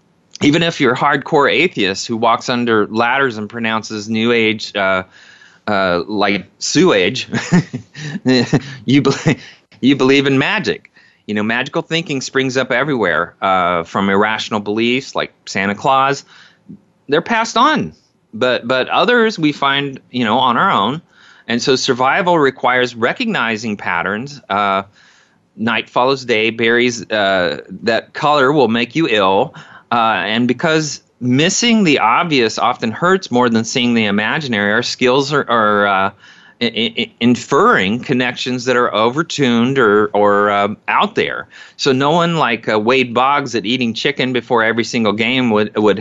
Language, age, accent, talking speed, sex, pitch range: English, 30-49, American, 150 wpm, male, 105-140 Hz